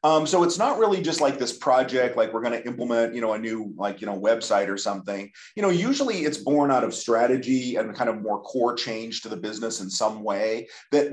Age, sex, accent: 40-59, male, American